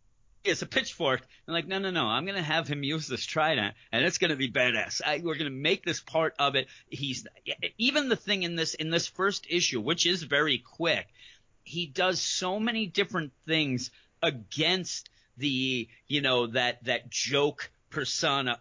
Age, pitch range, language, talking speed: 30-49, 115-160 Hz, English, 180 wpm